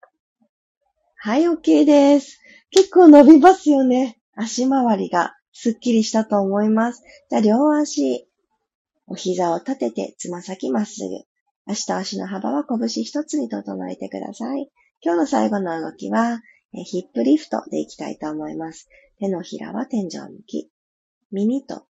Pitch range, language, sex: 210-295 Hz, Japanese, female